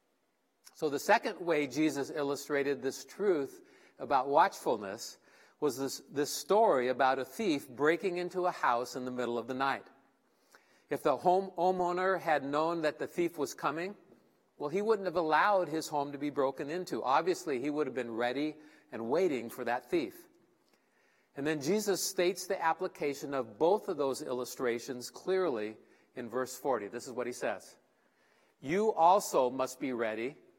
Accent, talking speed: American, 165 wpm